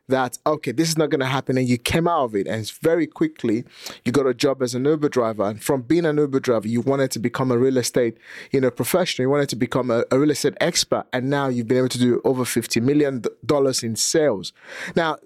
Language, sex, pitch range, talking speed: English, male, 125-160 Hz, 250 wpm